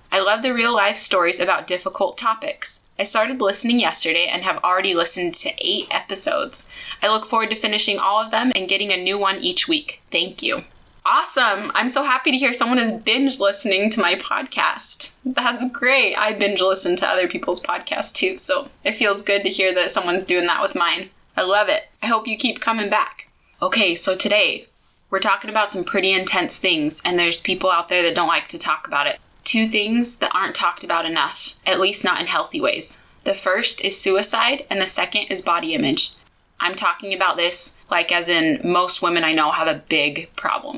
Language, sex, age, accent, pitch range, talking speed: English, female, 20-39, American, 180-245 Hz, 205 wpm